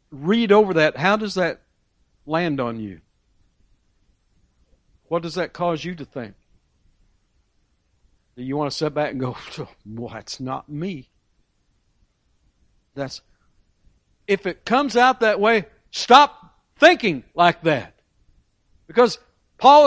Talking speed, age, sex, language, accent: 125 wpm, 60-79, male, English, American